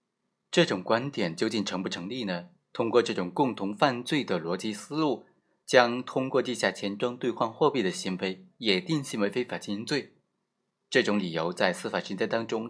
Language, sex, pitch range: Chinese, male, 100-150 Hz